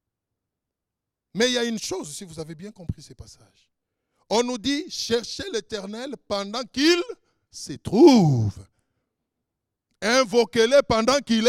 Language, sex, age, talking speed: French, male, 60-79, 130 wpm